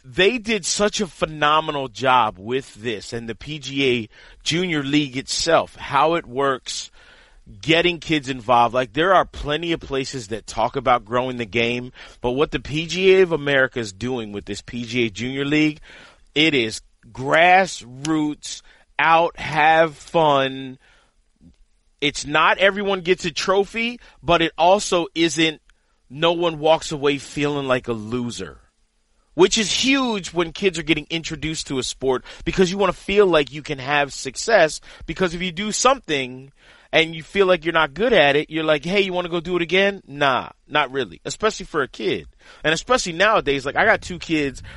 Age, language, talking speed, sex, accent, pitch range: 40-59, English, 175 wpm, male, American, 130-175 Hz